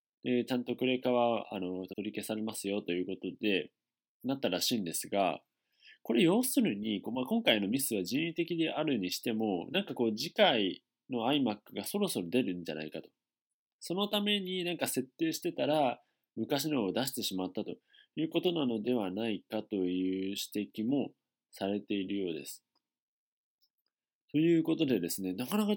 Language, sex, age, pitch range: Japanese, male, 20-39, 95-140 Hz